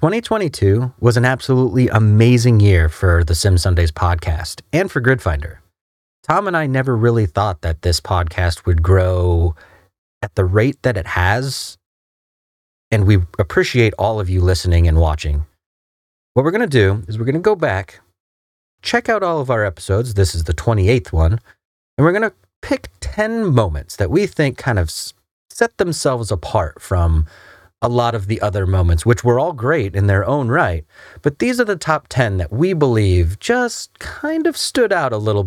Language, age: English, 30-49